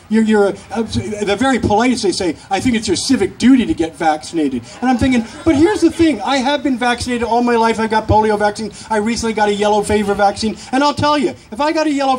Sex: male